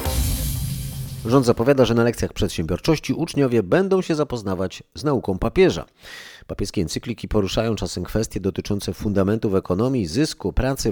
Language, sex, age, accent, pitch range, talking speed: Polish, male, 30-49, native, 95-125 Hz, 125 wpm